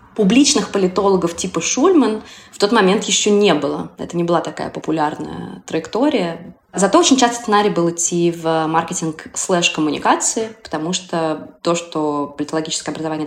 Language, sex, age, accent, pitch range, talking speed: Russian, female, 20-39, native, 155-180 Hz, 140 wpm